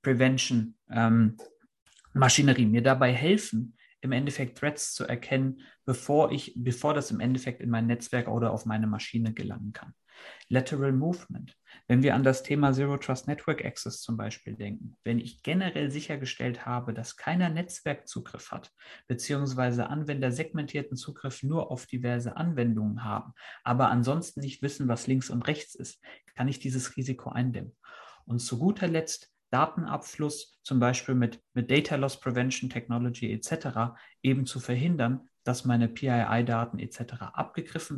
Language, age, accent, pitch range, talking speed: German, 50-69, German, 120-145 Hz, 140 wpm